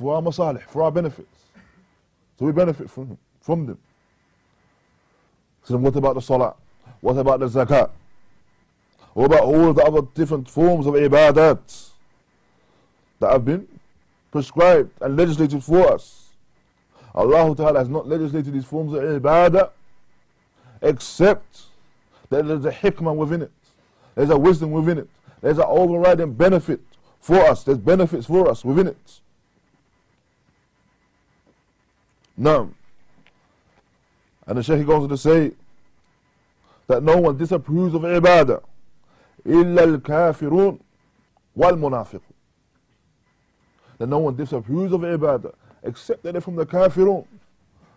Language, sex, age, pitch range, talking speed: English, male, 20-39, 140-175 Hz, 125 wpm